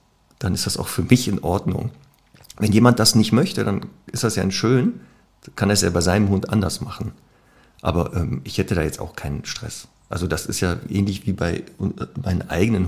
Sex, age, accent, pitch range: male, 50-69, German, 90-110 Hz